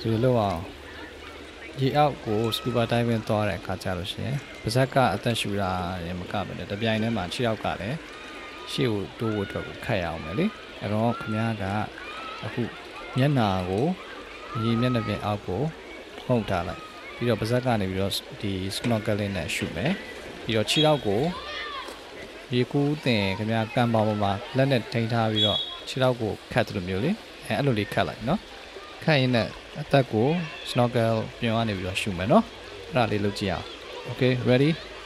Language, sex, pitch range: English, male, 105-135 Hz